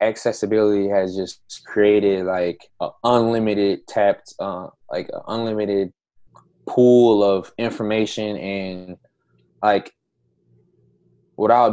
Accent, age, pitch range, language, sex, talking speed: American, 20-39, 95-105 Hz, English, male, 90 wpm